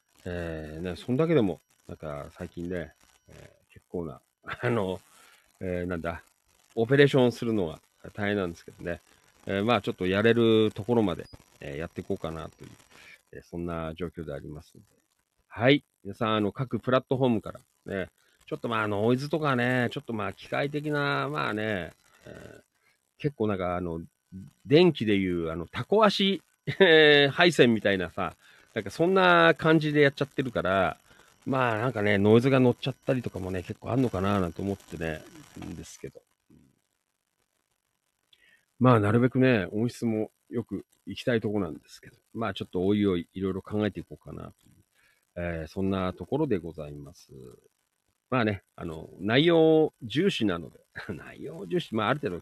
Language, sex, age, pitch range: Japanese, male, 40-59, 90-130 Hz